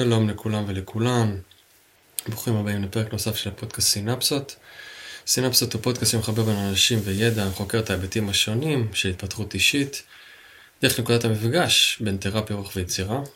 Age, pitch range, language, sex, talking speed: 20-39, 100-120 Hz, Hebrew, male, 140 wpm